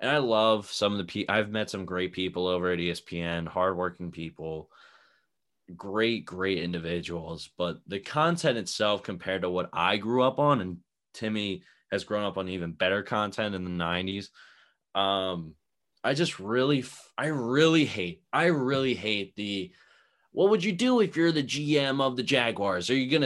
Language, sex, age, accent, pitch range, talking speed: English, male, 20-39, American, 95-145 Hz, 170 wpm